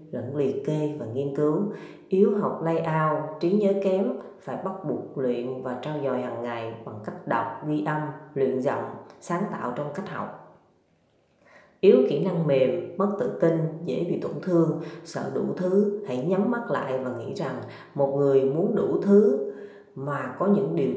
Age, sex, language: 20-39, female, Vietnamese